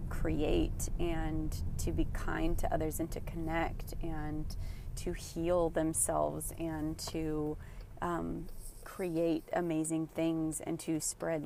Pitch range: 130-165 Hz